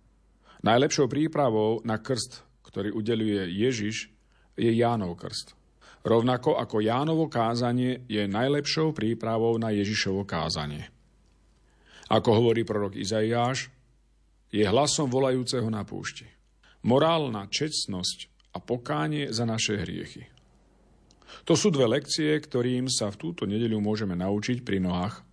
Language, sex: Slovak, male